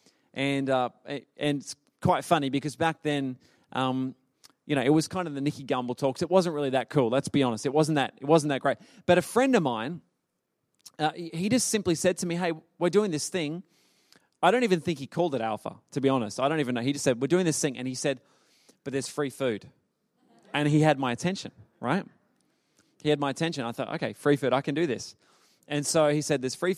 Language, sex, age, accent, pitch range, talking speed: English, male, 20-39, Australian, 130-155 Hz, 240 wpm